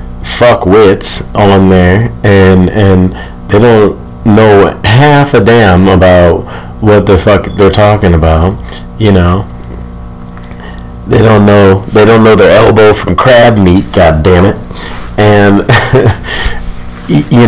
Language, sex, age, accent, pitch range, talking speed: English, male, 30-49, American, 80-105 Hz, 125 wpm